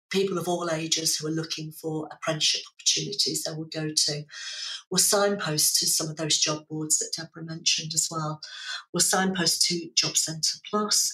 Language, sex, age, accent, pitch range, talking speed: English, female, 50-69, British, 160-190 Hz, 180 wpm